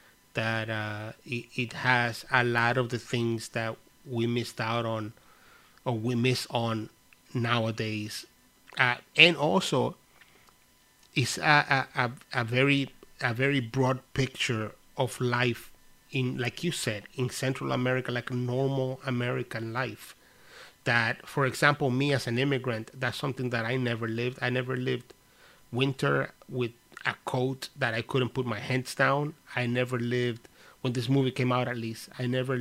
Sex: male